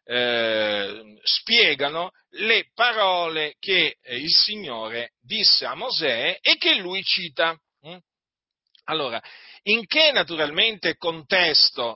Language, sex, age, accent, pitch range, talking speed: Italian, male, 40-59, native, 120-185 Hz, 90 wpm